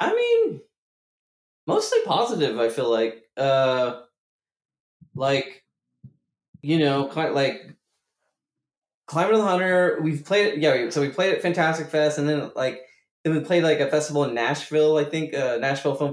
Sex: male